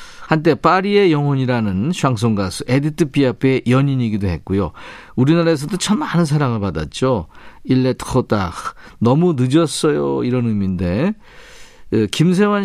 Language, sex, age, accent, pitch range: Korean, male, 40-59, native, 110-160 Hz